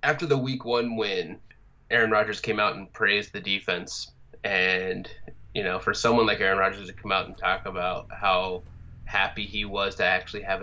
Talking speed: 190 wpm